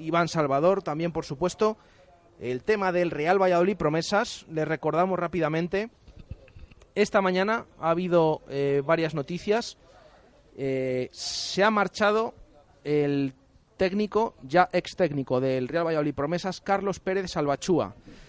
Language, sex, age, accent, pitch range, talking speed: Spanish, male, 30-49, Spanish, 140-195 Hz, 120 wpm